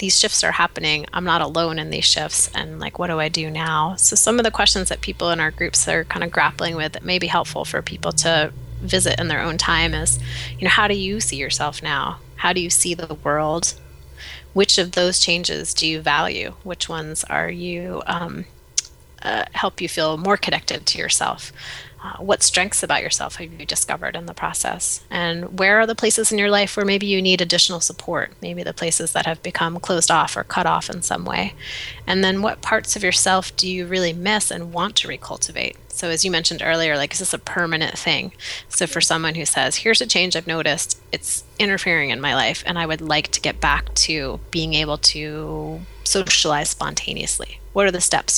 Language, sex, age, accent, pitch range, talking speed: English, female, 20-39, American, 155-185 Hz, 215 wpm